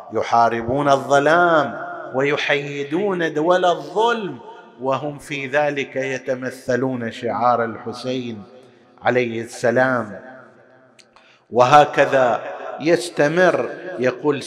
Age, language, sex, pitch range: 50-69, Arabic, male, 115-150 Hz